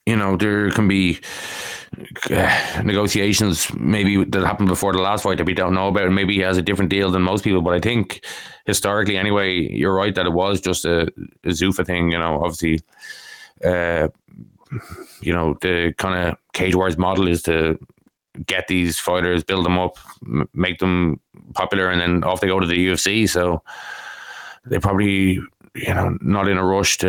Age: 20-39